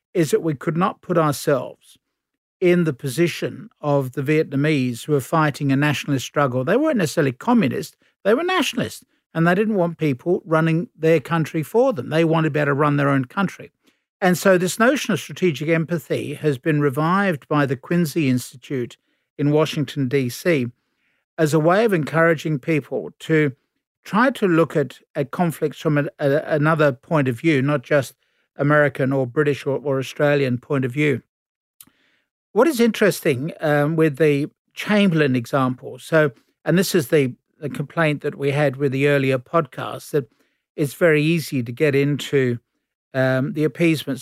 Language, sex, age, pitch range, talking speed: English, male, 50-69, 140-165 Hz, 165 wpm